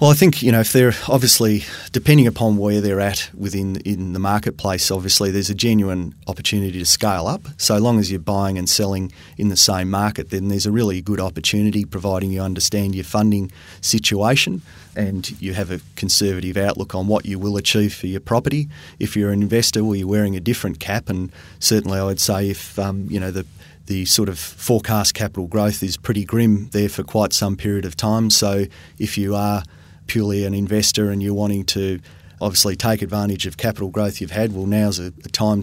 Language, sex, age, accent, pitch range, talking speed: English, male, 30-49, Australian, 95-105 Hz, 205 wpm